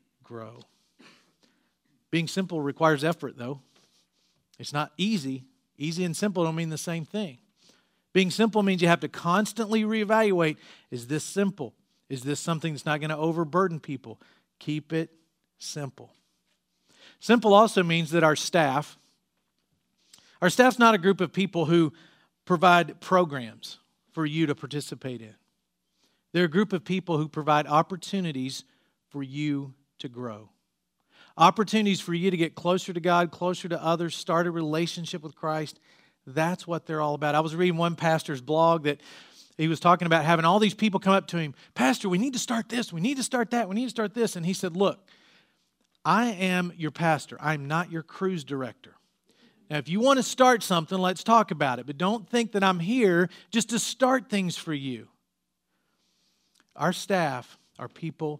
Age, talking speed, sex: 50-69, 175 wpm, male